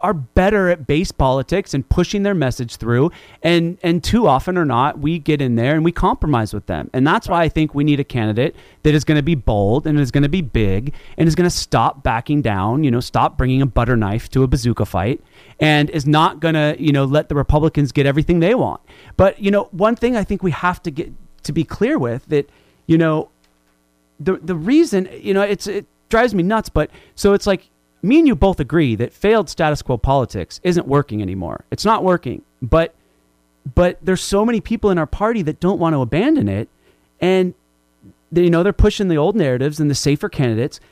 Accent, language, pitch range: American, English, 130-185 Hz